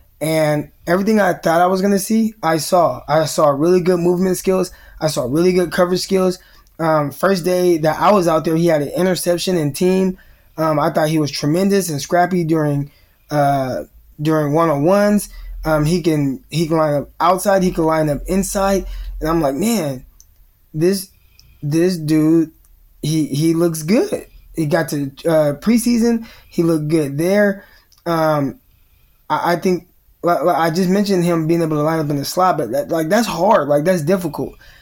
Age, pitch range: 20-39, 150-180 Hz